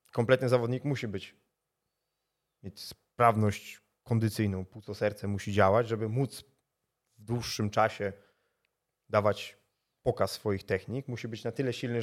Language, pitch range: Polish, 105-125 Hz